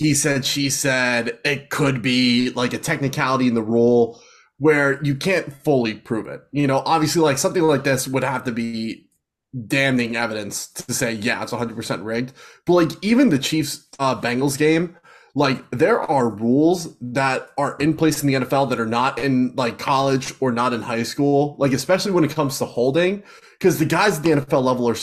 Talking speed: 195 wpm